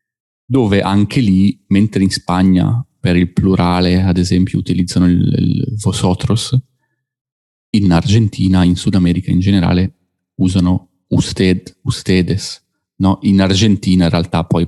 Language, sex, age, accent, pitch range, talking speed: Italian, male, 30-49, native, 90-115 Hz, 125 wpm